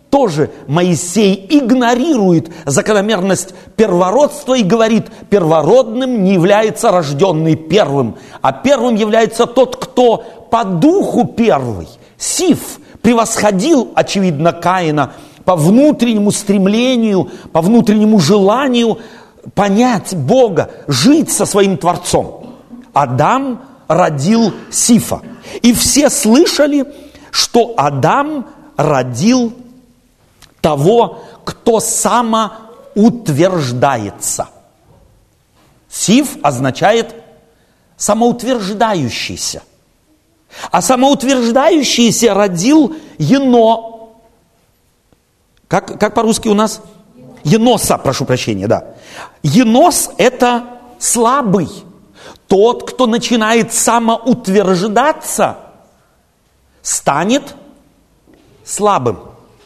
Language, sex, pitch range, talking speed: Russian, male, 185-245 Hz, 75 wpm